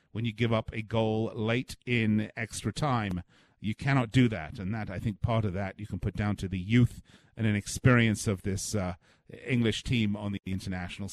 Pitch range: 105-135 Hz